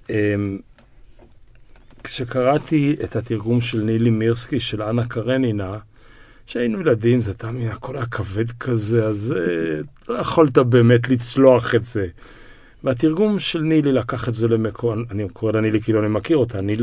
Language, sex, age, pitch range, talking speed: Hebrew, male, 50-69, 110-145 Hz, 145 wpm